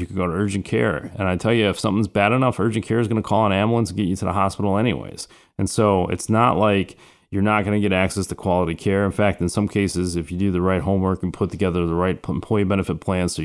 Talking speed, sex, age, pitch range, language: 280 wpm, male, 30-49, 90-100 Hz, English